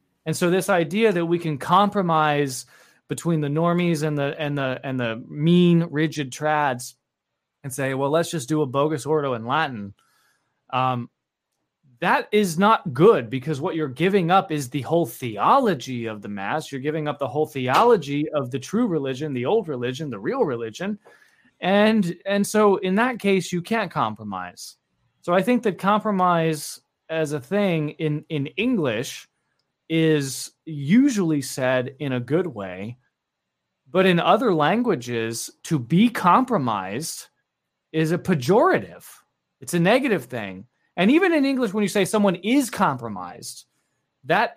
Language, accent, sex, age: English, American, male, 30-49